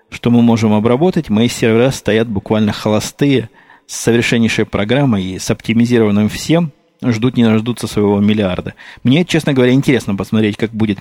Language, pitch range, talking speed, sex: Russian, 110-135 Hz, 145 wpm, male